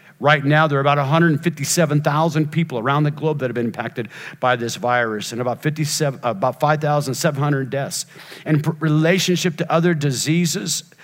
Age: 50-69